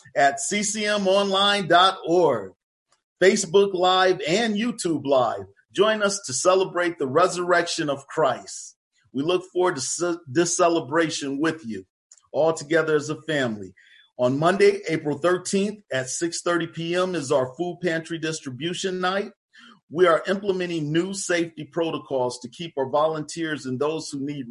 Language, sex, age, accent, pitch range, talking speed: English, male, 40-59, American, 140-175 Hz, 135 wpm